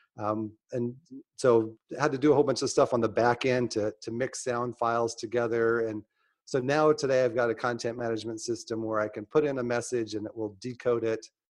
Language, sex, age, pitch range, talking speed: English, male, 40-59, 105-125 Hz, 230 wpm